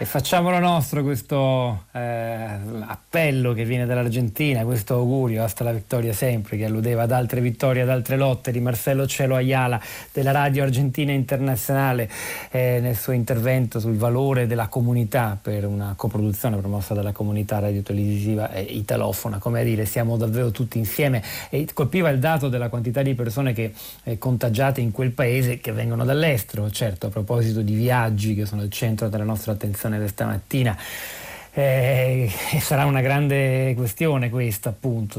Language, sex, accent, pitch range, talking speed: Italian, male, native, 115-135 Hz, 160 wpm